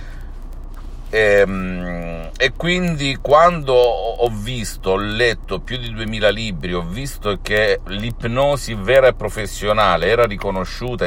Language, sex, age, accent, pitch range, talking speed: Italian, male, 50-69, native, 85-110 Hz, 115 wpm